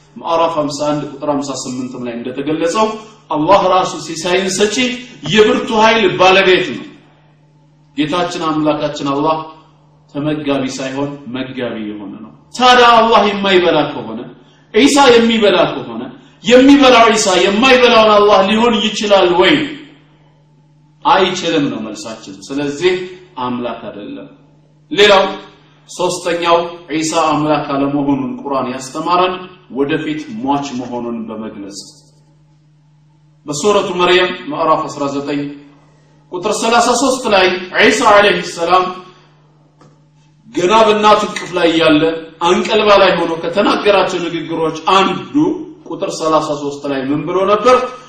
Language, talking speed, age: Amharic, 105 wpm, 40-59